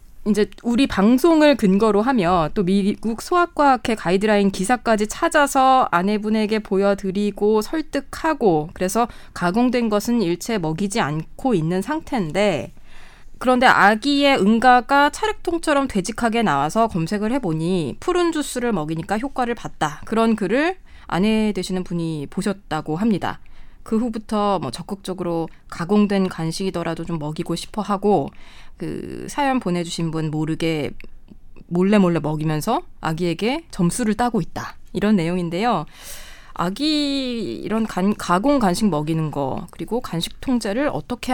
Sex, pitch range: female, 170-240 Hz